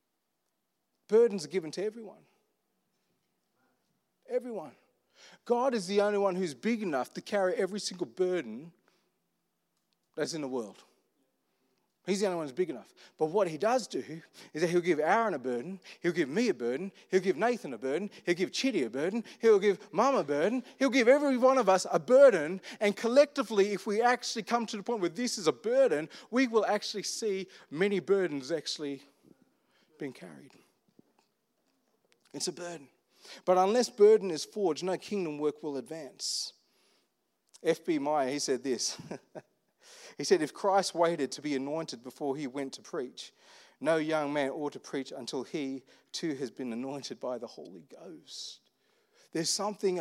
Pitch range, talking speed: 160-230 Hz, 170 wpm